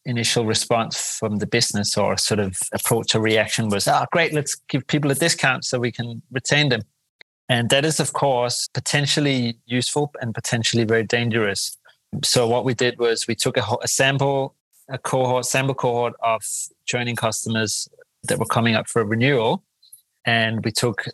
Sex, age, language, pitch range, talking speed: male, 30-49, English, 115-130 Hz, 175 wpm